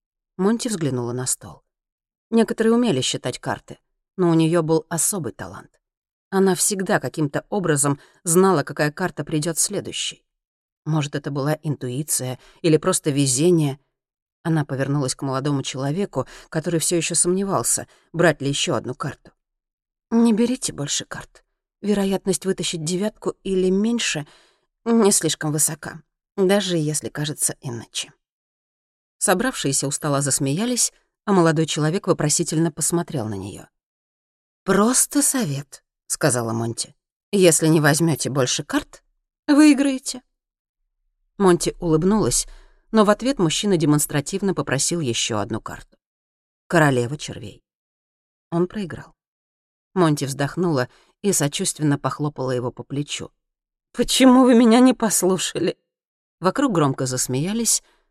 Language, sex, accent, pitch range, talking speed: Russian, female, native, 140-190 Hz, 115 wpm